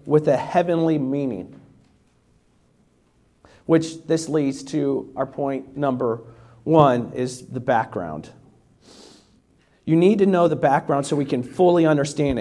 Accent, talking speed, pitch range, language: American, 125 wpm, 155-215 Hz, English